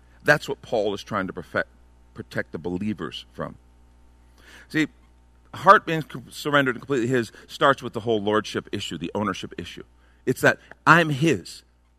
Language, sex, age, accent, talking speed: English, male, 50-69, American, 150 wpm